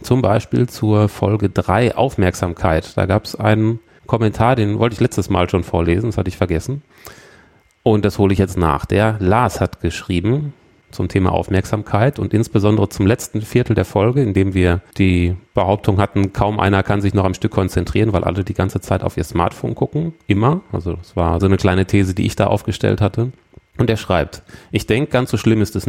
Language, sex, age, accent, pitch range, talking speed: German, male, 30-49, German, 95-115 Hz, 205 wpm